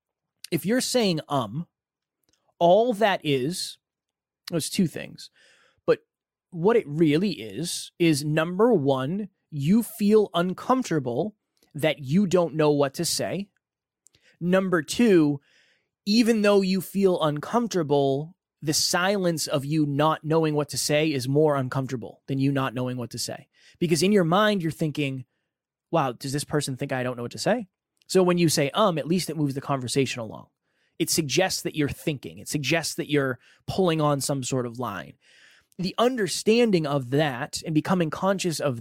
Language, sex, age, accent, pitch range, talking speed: English, male, 20-39, American, 140-185 Hz, 165 wpm